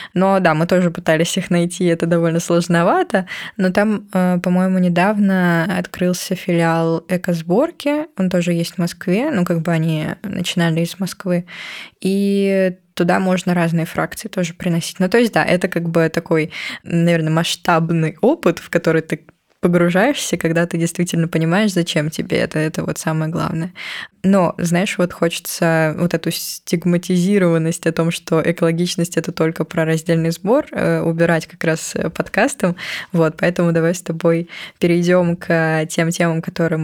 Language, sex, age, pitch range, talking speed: Russian, female, 20-39, 165-185 Hz, 150 wpm